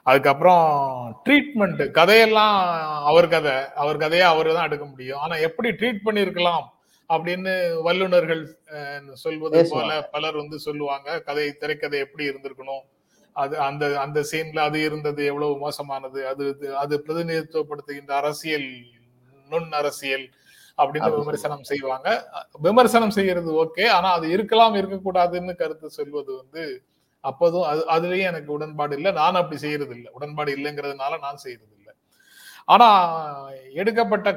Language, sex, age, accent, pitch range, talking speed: Tamil, male, 30-49, native, 145-195 Hz, 120 wpm